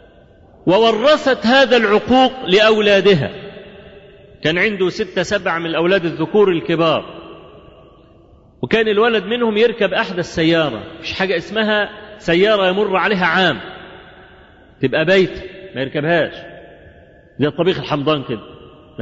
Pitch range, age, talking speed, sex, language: 175-225 Hz, 40-59, 105 wpm, male, Arabic